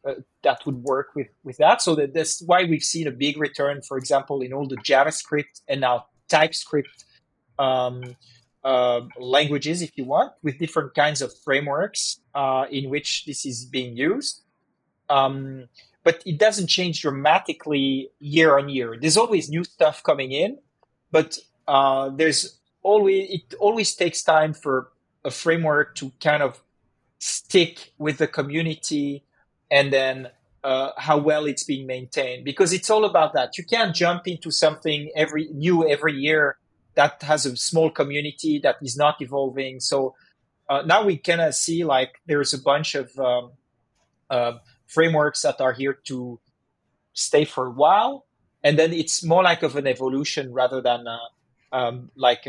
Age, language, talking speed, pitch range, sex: 30-49, English, 160 wpm, 130-160 Hz, male